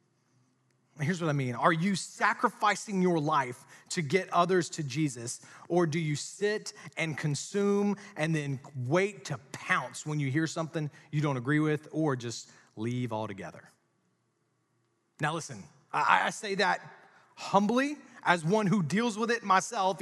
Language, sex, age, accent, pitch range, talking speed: English, male, 30-49, American, 140-190 Hz, 150 wpm